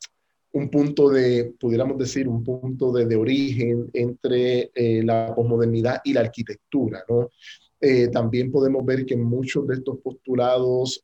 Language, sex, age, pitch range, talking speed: Spanish, male, 30-49, 115-130 Hz, 140 wpm